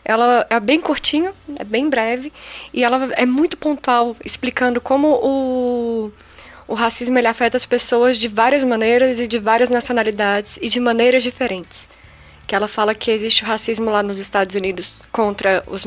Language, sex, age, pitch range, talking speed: Portuguese, female, 10-29, 220-255 Hz, 170 wpm